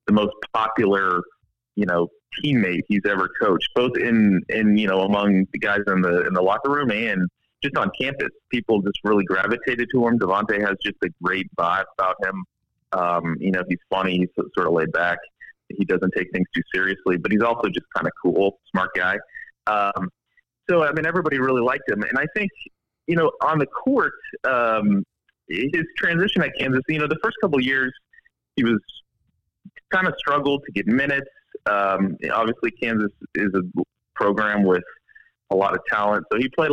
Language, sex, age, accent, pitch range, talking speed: English, male, 30-49, American, 95-130 Hz, 190 wpm